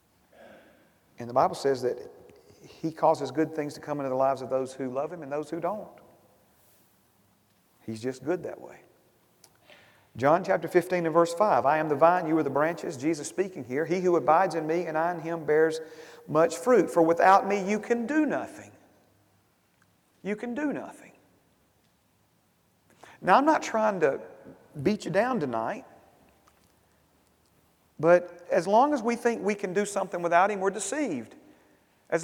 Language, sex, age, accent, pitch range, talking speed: English, male, 40-59, American, 165-240 Hz, 170 wpm